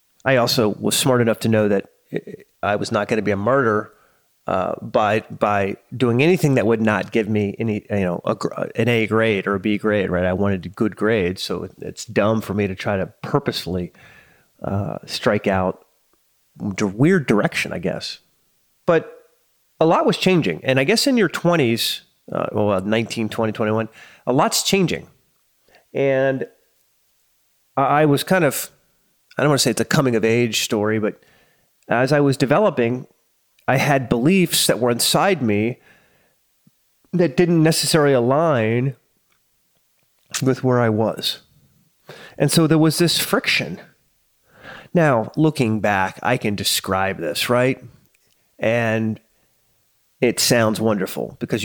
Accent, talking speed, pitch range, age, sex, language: American, 155 wpm, 105-140 Hz, 30-49, male, English